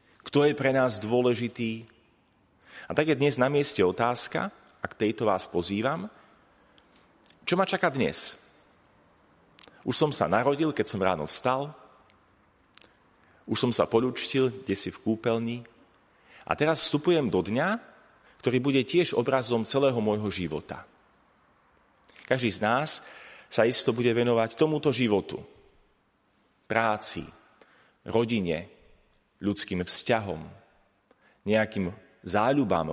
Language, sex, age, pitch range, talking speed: Slovak, male, 30-49, 105-135 Hz, 115 wpm